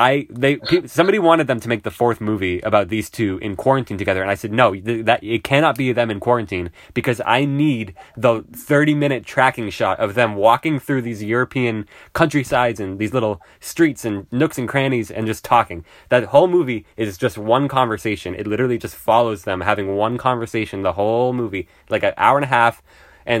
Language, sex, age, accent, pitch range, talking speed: English, male, 20-39, American, 100-125 Hz, 205 wpm